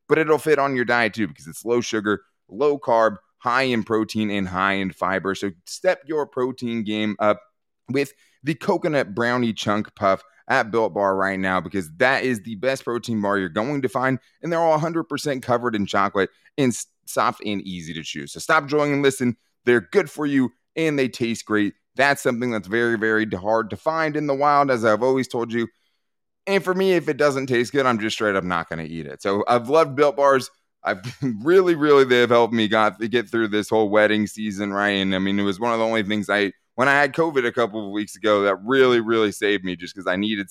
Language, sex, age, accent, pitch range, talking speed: English, male, 30-49, American, 100-130 Hz, 235 wpm